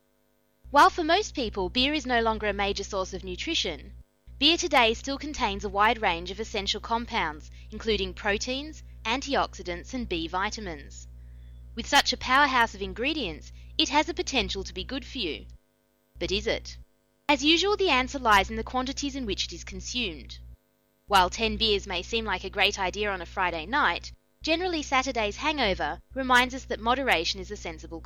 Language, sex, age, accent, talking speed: English, female, 20-39, Australian, 180 wpm